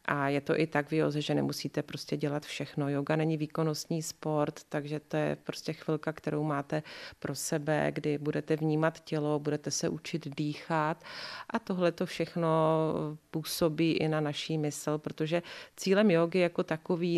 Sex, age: female, 30-49